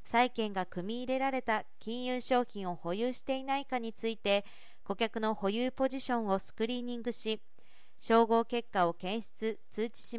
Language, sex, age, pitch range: Japanese, female, 40-59, 205-250 Hz